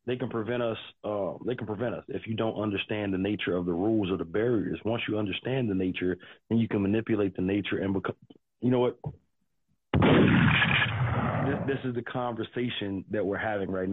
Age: 30-49